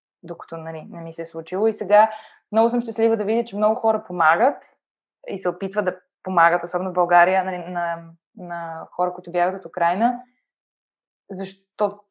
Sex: female